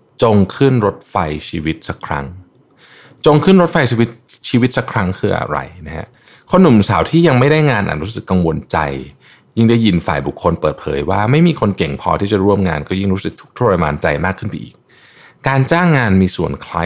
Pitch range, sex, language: 80-115 Hz, male, Thai